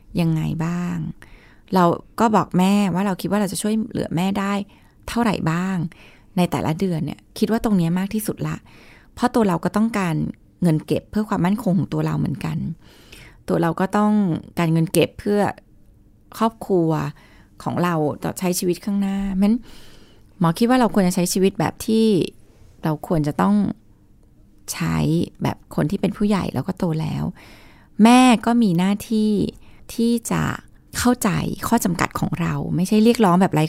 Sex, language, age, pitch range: female, Thai, 20-39, 155-210 Hz